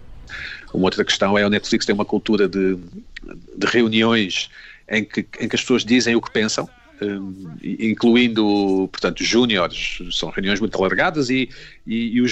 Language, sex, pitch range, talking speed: Portuguese, male, 100-135 Hz, 170 wpm